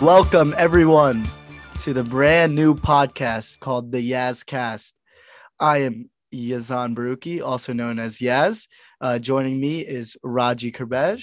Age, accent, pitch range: 20-39, American, 130-160 Hz